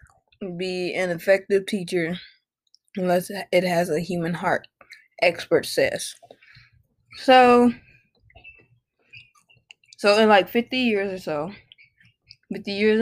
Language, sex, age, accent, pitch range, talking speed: English, female, 20-39, American, 170-220 Hz, 100 wpm